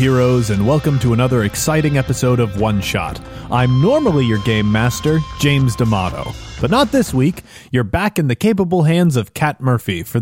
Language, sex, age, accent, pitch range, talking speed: English, male, 30-49, American, 115-155 Hz, 180 wpm